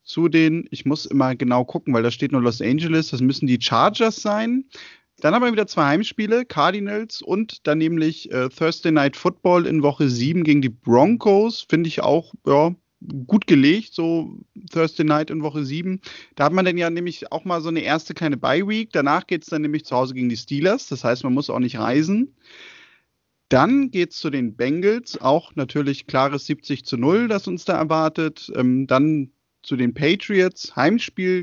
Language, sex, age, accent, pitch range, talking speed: German, male, 30-49, German, 140-195 Hz, 195 wpm